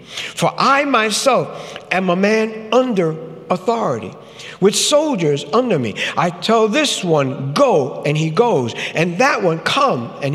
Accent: American